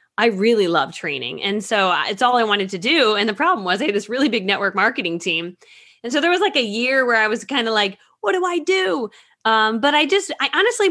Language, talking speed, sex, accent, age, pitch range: English, 260 wpm, female, American, 20-39, 190-260 Hz